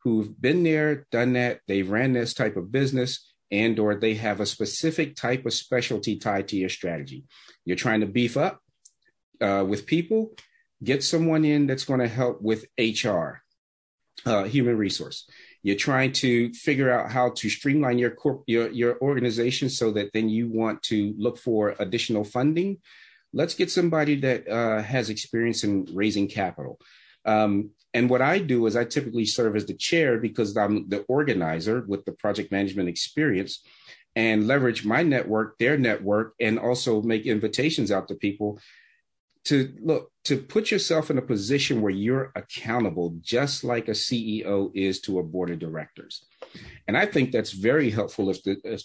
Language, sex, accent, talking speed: English, male, American, 170 wpm